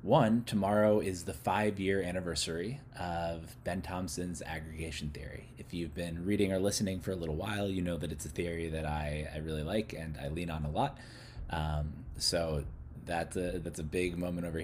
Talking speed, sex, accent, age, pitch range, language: 195 wpm, male, American, 20-39, 75-95 Hz, English